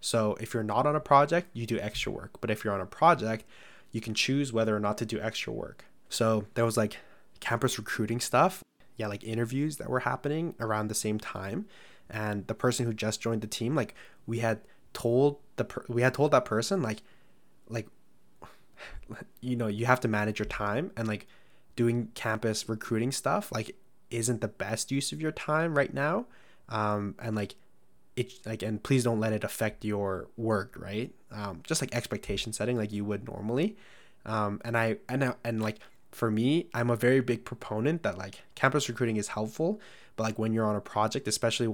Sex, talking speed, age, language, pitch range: male, 200 wpm, 20-39, English, 105-125 Hz